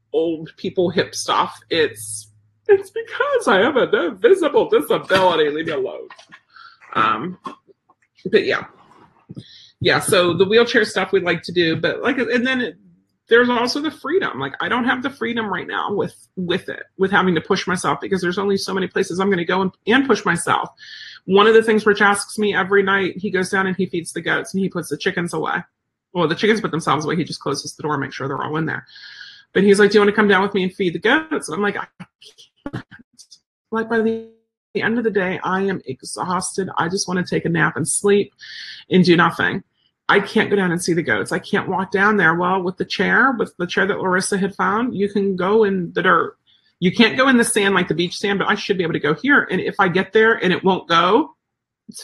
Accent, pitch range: American, 180-235 Hz